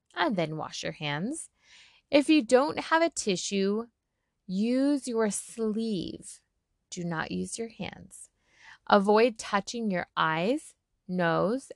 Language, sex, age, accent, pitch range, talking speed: English, female, 20-39, American, 185-285 Hz, 120 wpm